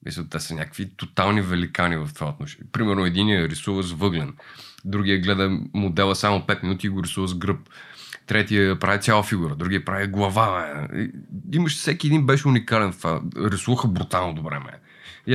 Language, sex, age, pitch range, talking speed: Bulgarian, male, 30-49, 95-125 Hz, 170 wpm